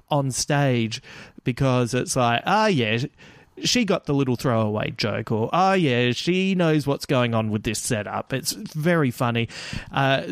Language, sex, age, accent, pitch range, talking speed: English, male, 30-49, Australian, 120-145 Hz, 175 wpm